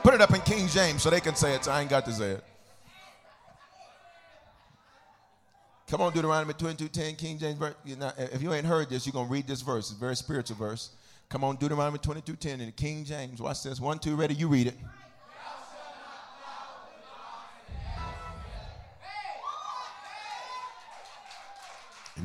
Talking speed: 155 wpm